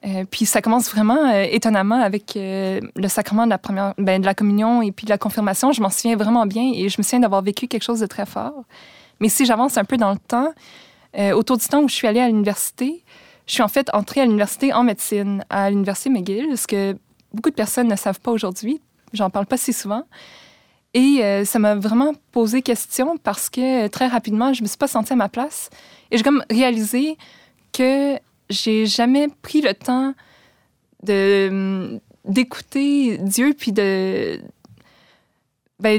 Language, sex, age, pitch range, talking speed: French, female, 20-39, 205-250 Hz, 195 wpm